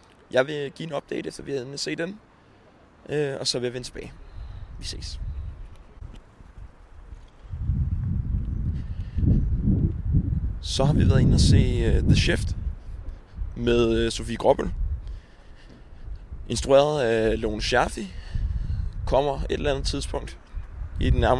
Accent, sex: native, male